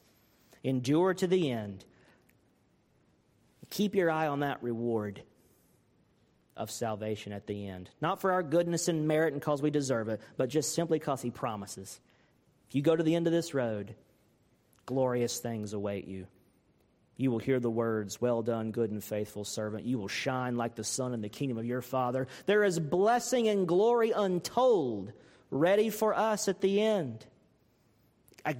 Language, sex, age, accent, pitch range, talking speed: English, male, 40-59, American, 110-160 Hz, 170 wpm